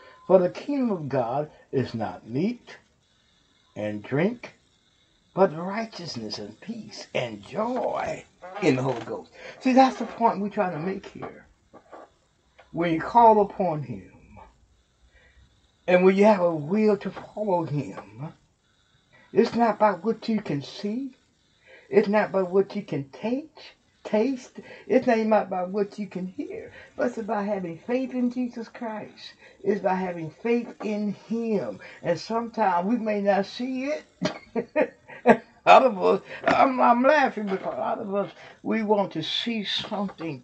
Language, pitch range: English, 160-225 Hz